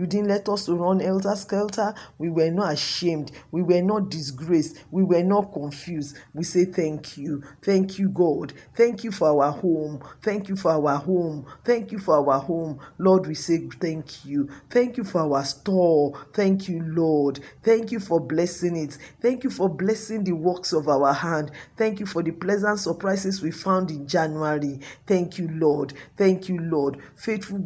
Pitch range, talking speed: 150-195 Hz, 185 wpm